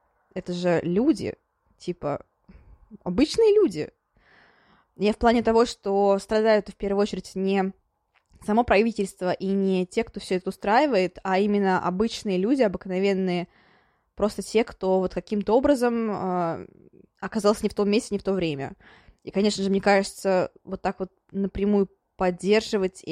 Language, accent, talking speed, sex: Russian, native, 145 wpm, female